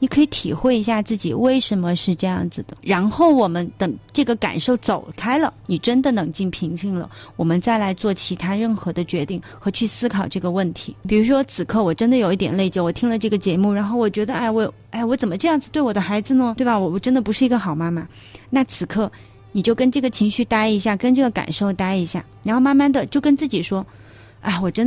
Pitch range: 185-240 Hz